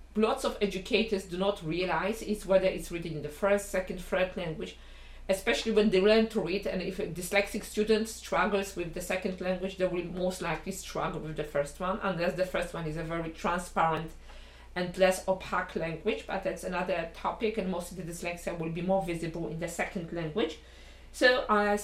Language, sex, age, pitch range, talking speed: English, female, 50-69, 170-220 Hz, 200 wpm